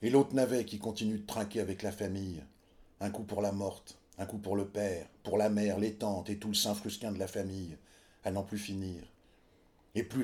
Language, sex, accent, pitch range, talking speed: French, male, French, 85-105 Hz, 230 wpm